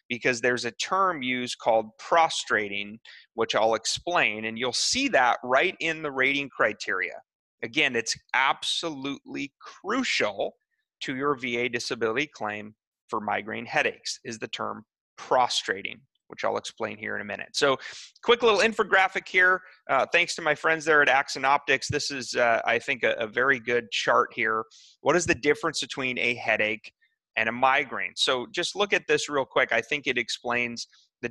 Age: 30-49